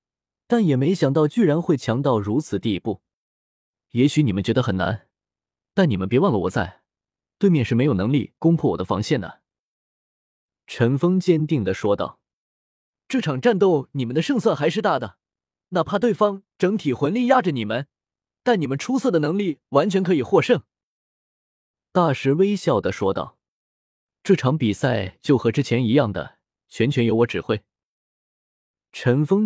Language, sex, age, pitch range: Chinese, male, 20-39, 115-180 Hz